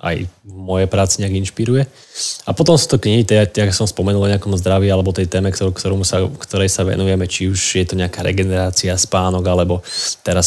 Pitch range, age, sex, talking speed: 95-100 Hz, 20-39, male, 195 wpm